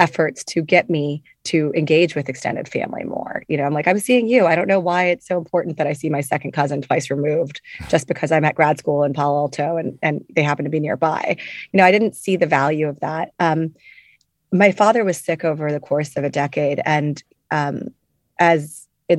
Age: 30-49